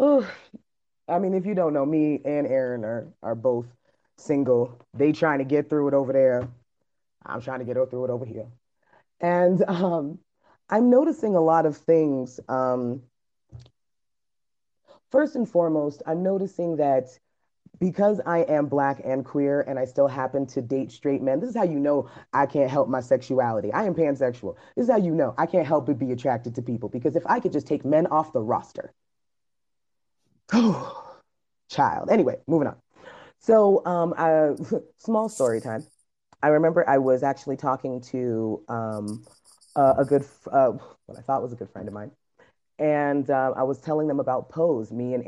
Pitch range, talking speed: 125-160 Hz, 180 wpm